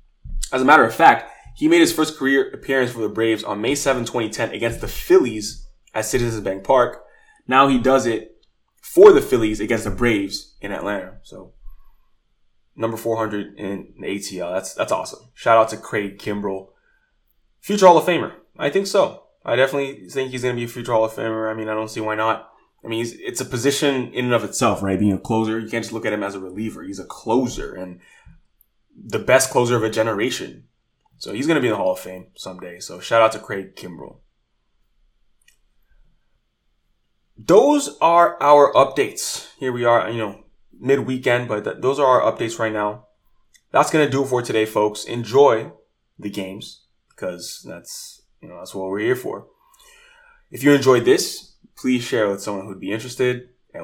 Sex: male